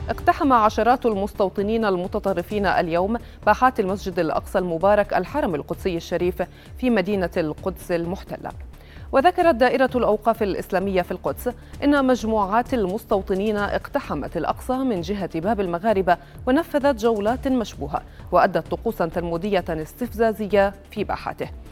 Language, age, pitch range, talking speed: Arabic, 30-49, 185-245 Hz, 110 wpm